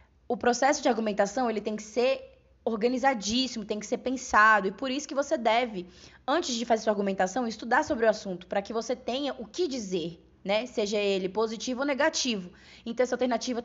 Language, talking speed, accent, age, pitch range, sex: Portuguese, 190 wpm, Brazilian, 10-29, 215-280 Hz, female